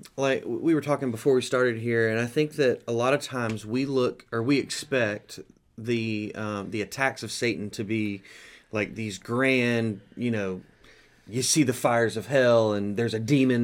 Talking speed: 195 wpm